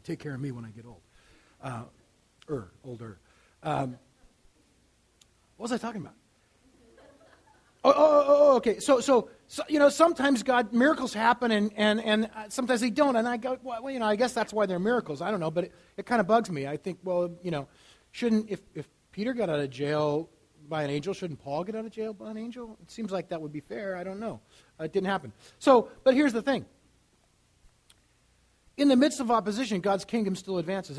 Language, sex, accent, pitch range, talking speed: English, male, American, 140-235 Hz, 215 wpm